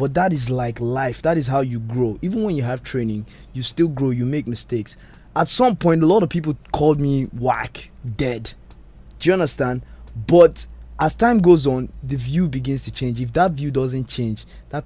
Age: 20-39